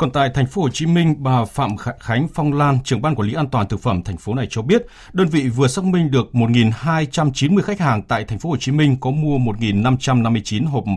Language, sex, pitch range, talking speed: Vietnamese, male, 100-135 Hz, 240 wpm